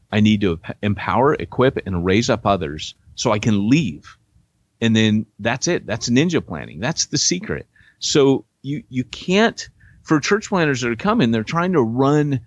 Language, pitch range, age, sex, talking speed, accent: English, 100-140 Hz, 30-49, male, 180 wpm, American